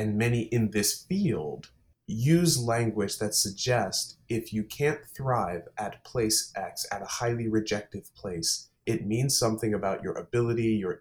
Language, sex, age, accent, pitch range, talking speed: English, male, 30-49, American, 110-125 Hz, 155 wpm